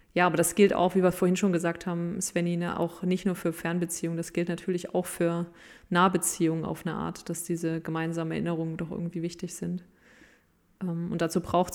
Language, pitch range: German, 170-190 Hz